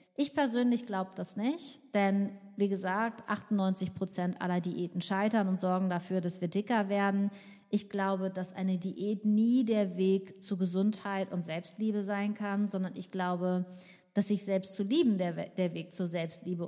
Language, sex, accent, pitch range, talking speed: German, female, German, 185-215 Hz, 165 wpm